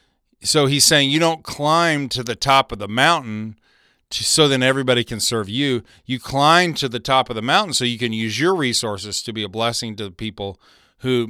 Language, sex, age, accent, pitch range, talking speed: English, male, 40-59, American, 110-135 Hz, 210 wpm